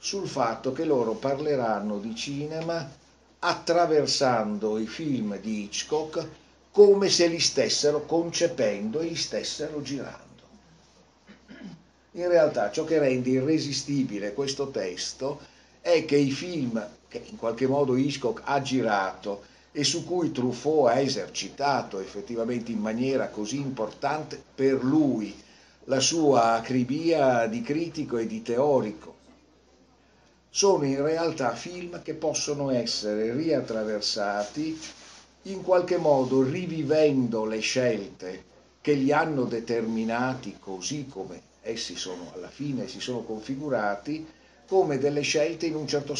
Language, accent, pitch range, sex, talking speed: Italian, native, 115-155 Hz, male, 120 wpm